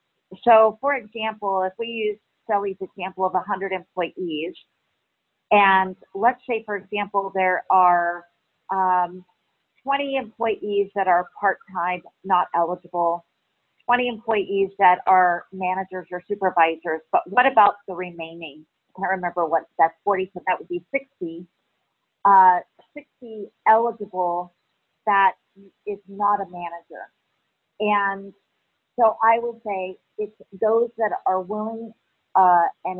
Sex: female